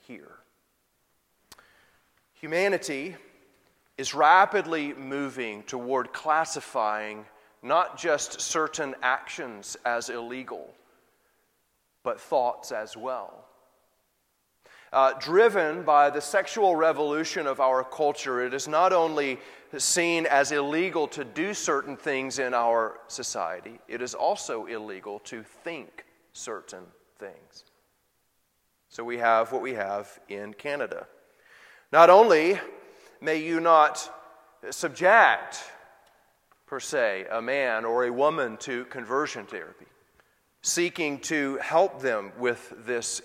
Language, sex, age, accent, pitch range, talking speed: English, male, 30-49, American, 120-160 Hz, 105 wpm